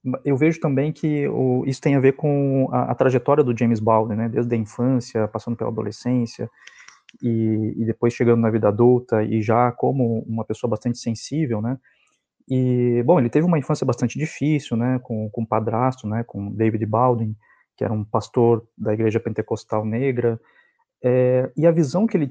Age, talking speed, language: 20-39, 185 wpm, Portuguese